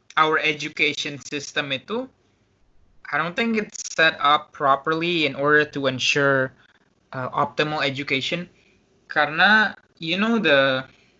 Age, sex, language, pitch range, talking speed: 20-39, male, Indonesian, 140-170 Hz, 120 wpm